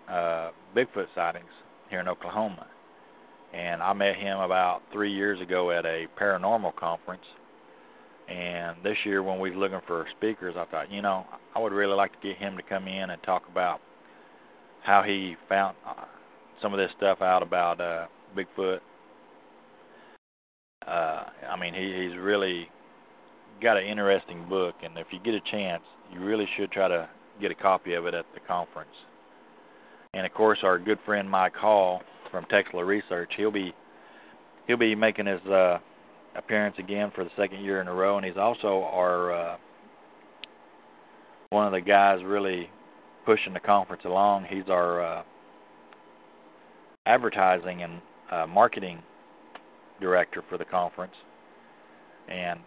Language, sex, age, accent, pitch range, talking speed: English, male, 40-59, American, 85-100 Hz, 155 wpm